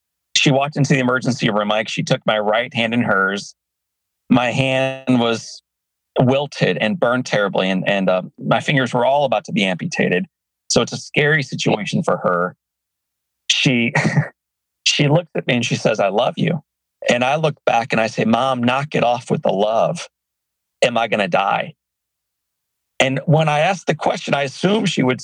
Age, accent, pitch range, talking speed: 40-59, American, 120-160 Hz, 190 wpm